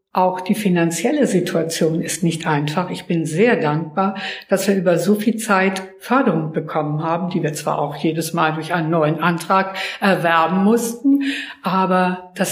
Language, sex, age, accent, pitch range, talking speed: German, female, 60-79, German, 170-210 Hz, 165 wpm